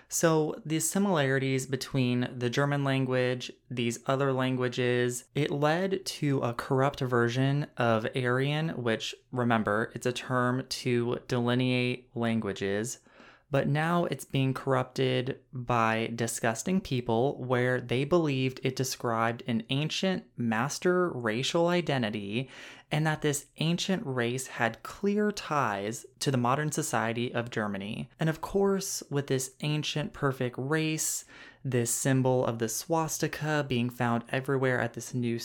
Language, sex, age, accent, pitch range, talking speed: English, male, 20-39, American, 120-150 Hz, 130 wpm